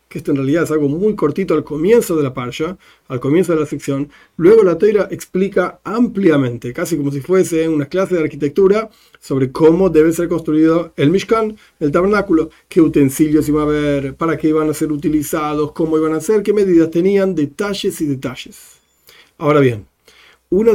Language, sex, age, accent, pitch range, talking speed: Spanish, male, 40-59, Argentinian, 145-185 Hz, 185 wpm